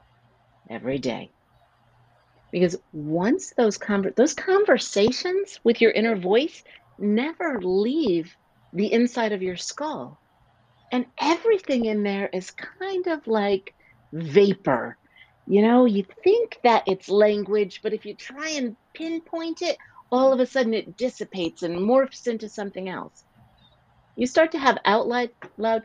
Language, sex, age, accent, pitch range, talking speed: English, female, 50-69, American, 190-250 Hz, 135 wpm